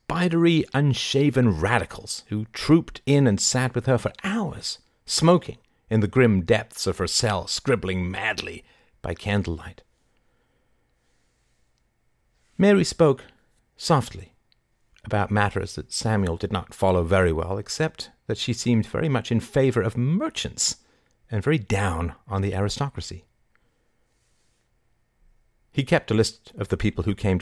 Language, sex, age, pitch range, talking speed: English, male, 50-69, 95-120 Hz, 135 wpm